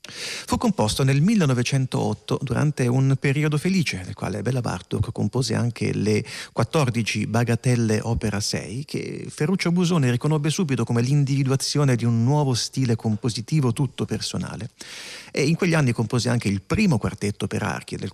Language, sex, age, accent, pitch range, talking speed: Italian, male, 40-59, native, 110-150 Hz, 150 wpm